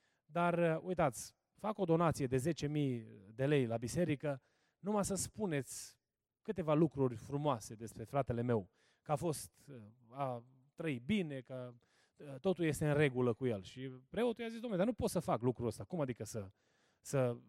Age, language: 30-49, Romanian